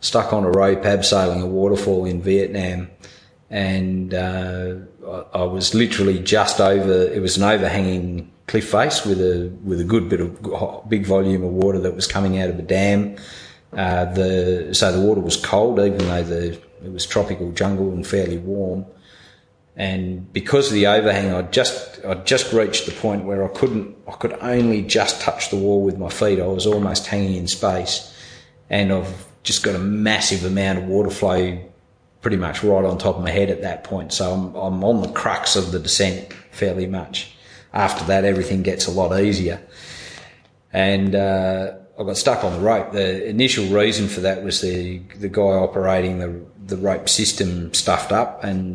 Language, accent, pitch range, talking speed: English, Australian, 90-100 Hz, 190 wpm